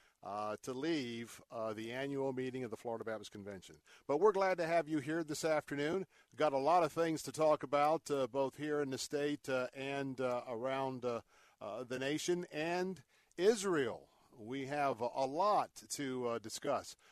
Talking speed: 180 wpm